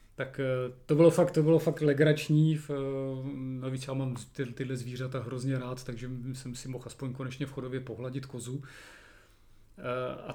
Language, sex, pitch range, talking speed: Czech, male, 135-155 Hz, 155 wpm